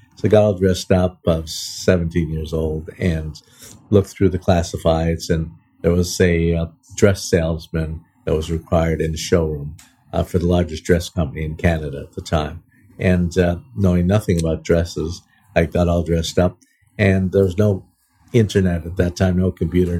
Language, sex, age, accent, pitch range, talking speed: English, male, 50-69, American, 85-95 Hz, 175 wpm